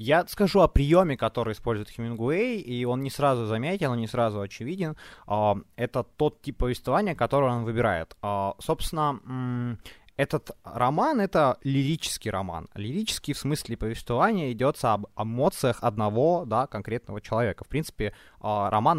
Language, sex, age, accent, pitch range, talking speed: Ukrainian, male, 20-39, native, 105-145 Hz, 135 wpm